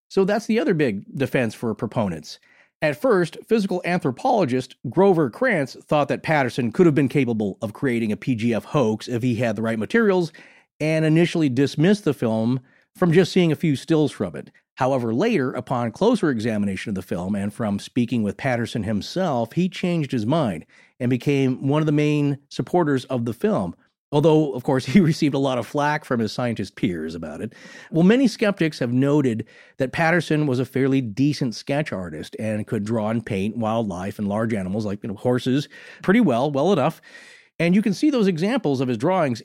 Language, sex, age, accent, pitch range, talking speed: English, male, 40-59, American, 115-175 Hz, 190 wpm